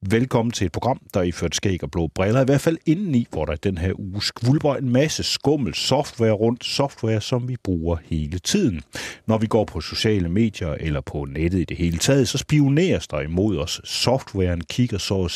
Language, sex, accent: Danish, male, native